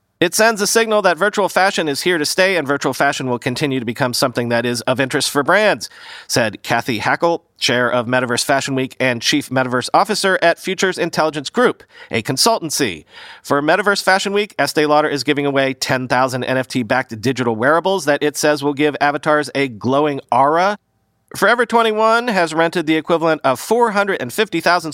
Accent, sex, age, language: American, male, 40-59, English